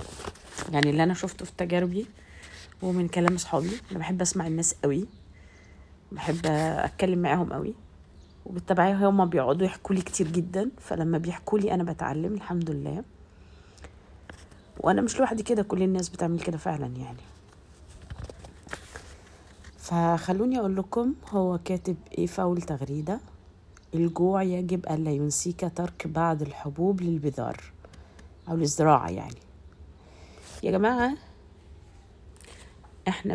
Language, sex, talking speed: Arabic, female, 110 wpm